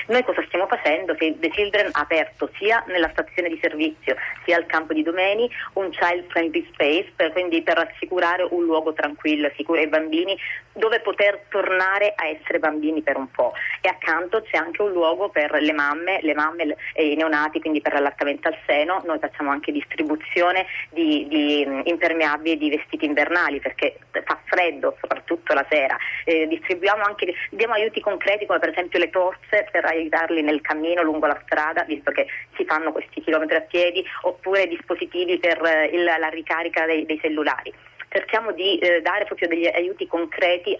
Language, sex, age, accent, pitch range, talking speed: Italian, female, 30-49, native, 155-195 Hz, 175 wpm